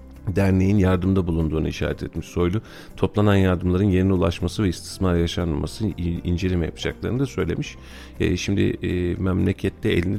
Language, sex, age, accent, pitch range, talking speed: Turkish, male, 40-59, native, 80-95 Hz, 130 wpm